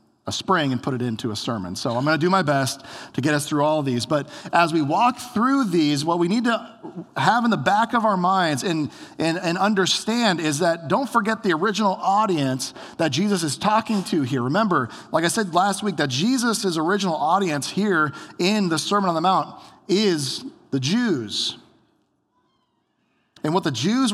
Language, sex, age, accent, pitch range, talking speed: English, male, 40-59, American, 150-205 Hz, 195 wpm